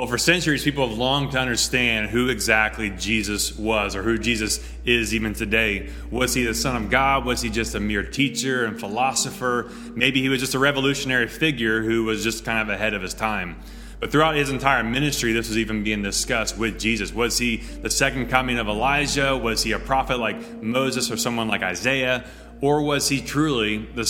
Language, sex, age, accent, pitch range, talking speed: English, male, 30-49, American, 110-135 Hz, 205 wpm